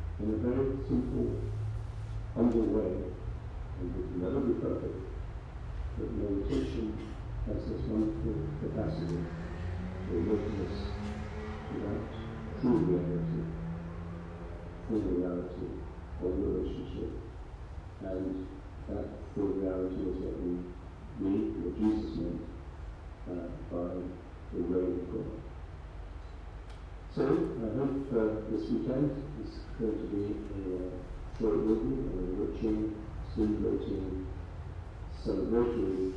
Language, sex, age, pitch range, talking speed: English, male, 50-69, 85-105 Hz, 100 wpm